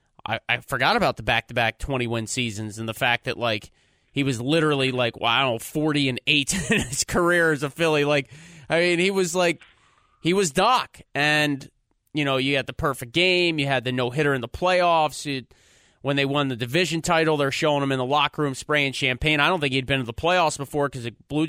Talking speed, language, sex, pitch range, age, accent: 225 wpm, English, male, 130-160 Hz, 30-49, American